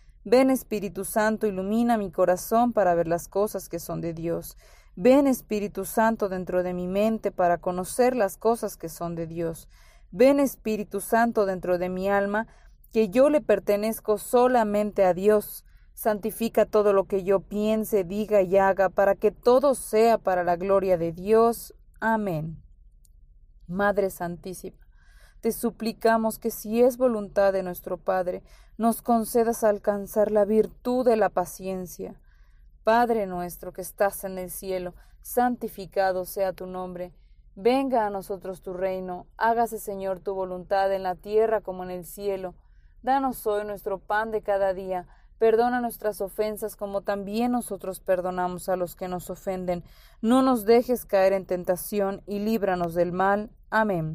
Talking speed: 155 wpm